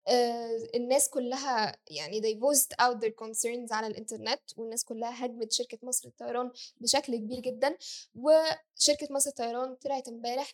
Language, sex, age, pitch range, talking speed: Arabic, female, 10-29, 230-270 Hz, 135 wpm